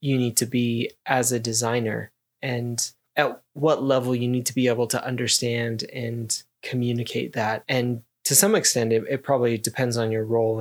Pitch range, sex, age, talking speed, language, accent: 115-130 Hz, male, 20-39, 180 wpm, English, American